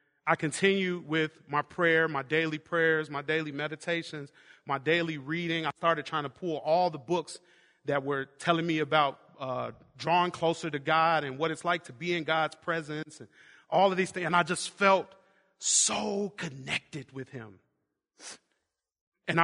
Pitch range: 135-170 Hz